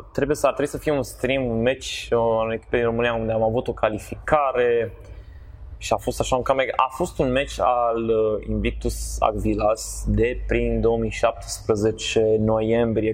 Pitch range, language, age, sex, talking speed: 105-125 Hz, Romanian, 20-39, male, 165 wpm